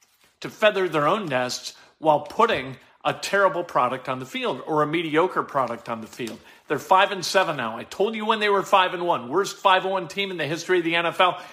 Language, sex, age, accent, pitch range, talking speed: English, male, 50-69, American, 155-195 Hz, 225 wpm